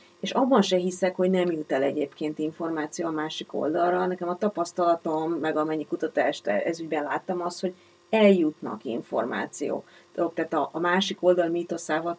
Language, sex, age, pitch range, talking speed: Hungarian, female, 30-49, 160-195 Hz, 155 wpm